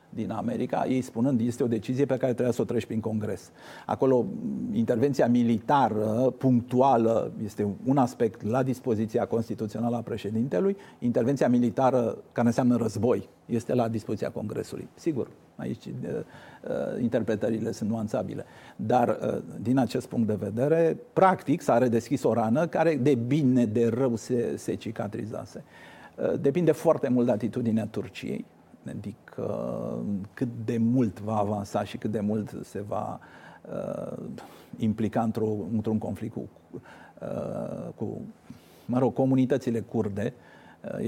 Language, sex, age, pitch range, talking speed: Romanian, male, 50-69, 110-130 Hz, 135 wpm